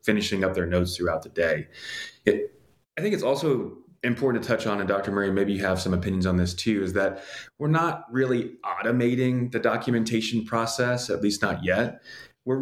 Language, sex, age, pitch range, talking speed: English, male, 20-39, 90-115 Hz, 195 wpm